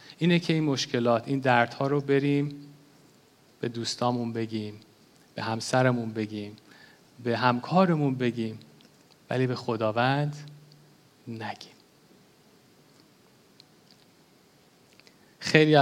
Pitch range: 120-145 Hz